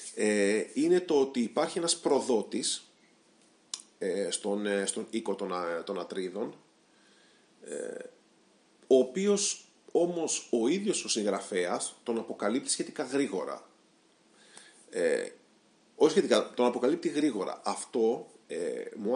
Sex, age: male, 40-59